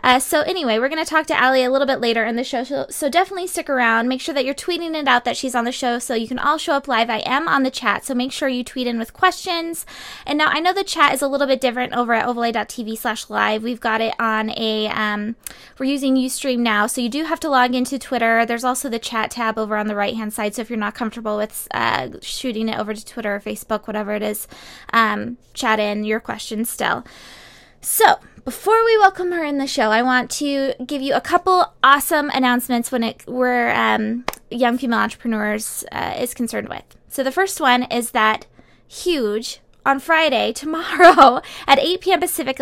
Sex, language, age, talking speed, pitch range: female, English, 20-39, 230 wpm, 230-280 Hz